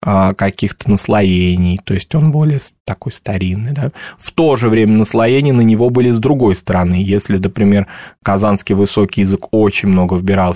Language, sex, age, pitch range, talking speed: Russian, male, 20-39, 100-125 Hz, 155 wpm